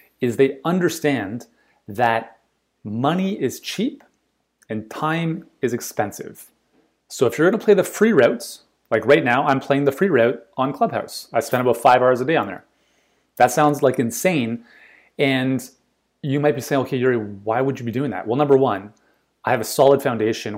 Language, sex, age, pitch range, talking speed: English, male, 30-49, 115-140 Hz, 185 wpm